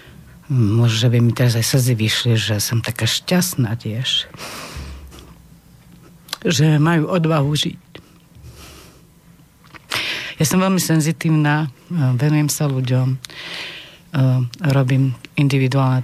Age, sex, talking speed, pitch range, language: 50-69, female, 95 wpm, 120-145 Hz, Slovak